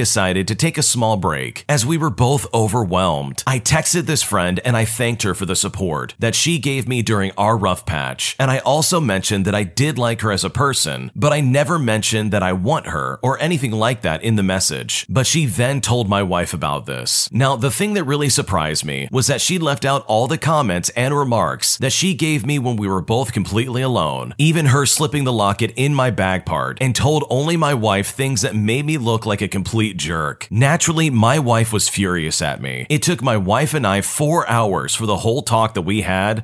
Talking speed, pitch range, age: 225 wpm, 100-140 Hz, 40-59